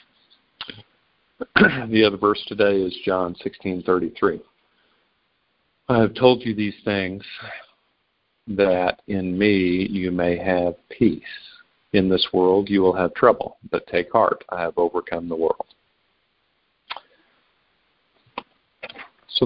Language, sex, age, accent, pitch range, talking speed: English, male, 50-69, American, 90-105 Hz, 115 wpm